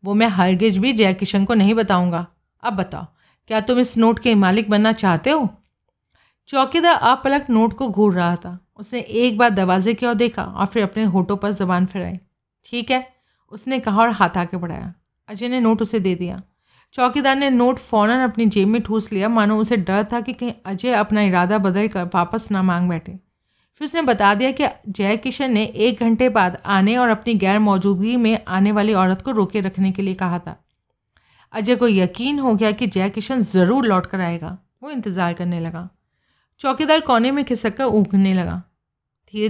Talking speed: 195 wpm